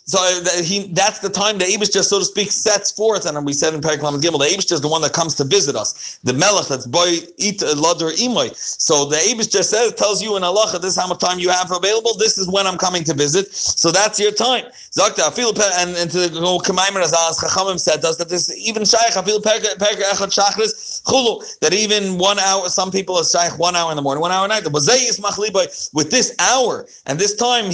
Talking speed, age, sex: 215 wpm, 40-59, male